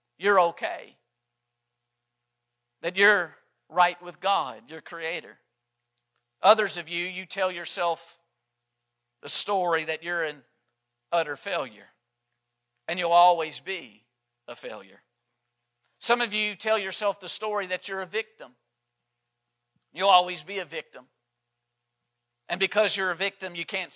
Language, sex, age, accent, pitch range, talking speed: English, male, 50-69, American, 120-185 Hz, 130 wpm